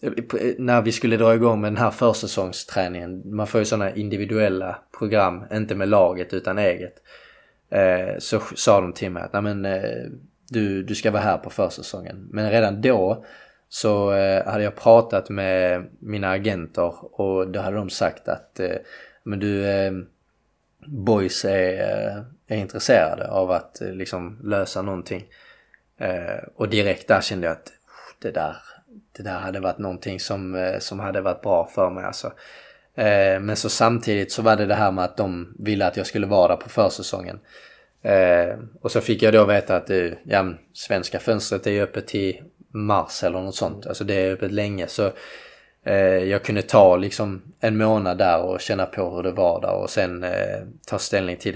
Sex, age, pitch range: male, 20-39, 95-110 Hz